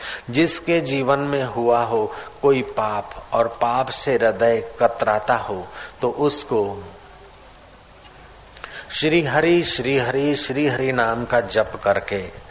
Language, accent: Hindi, native